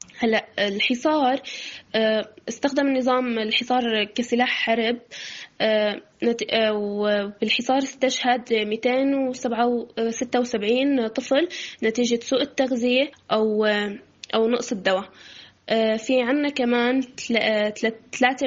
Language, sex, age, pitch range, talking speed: Arabic, female, 10-29, 220-255 Hz, 85 wpm